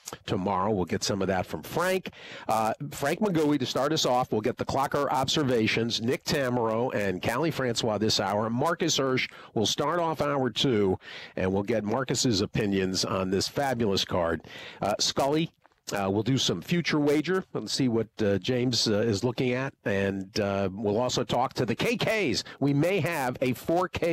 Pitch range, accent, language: 105-145 Hz, American, English